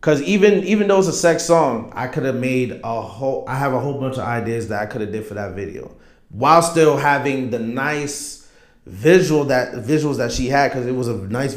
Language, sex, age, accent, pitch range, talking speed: English, male, 30-49, American, 120-150 Hz, 235 wpm